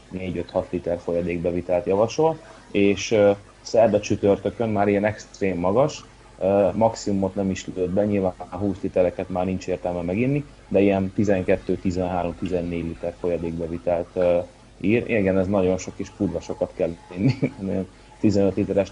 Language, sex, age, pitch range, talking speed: Hungarian, male, 30-49, 90-100 Hz, 135 wpm